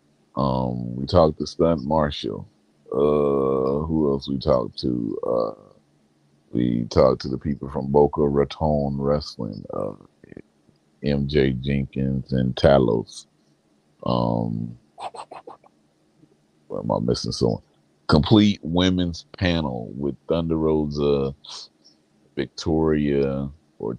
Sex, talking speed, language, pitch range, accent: male, 105 wpm, English, 65-75 Hz, American